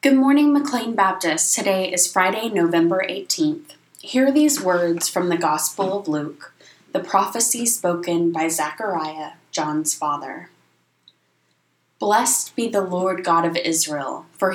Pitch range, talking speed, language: 165-205 Hz, 130 wpm, English